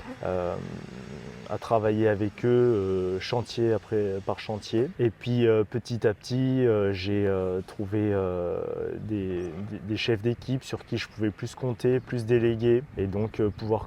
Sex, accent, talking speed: male, French, 150 wpm